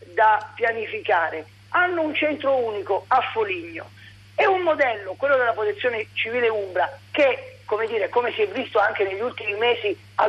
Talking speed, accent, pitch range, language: 160 wpm, native, 220-335 Hz, Italian